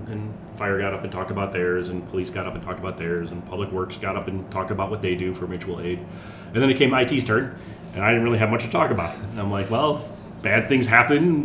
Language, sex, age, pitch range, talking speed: English, male, 30-49, 90-110 Hz, 275 wpm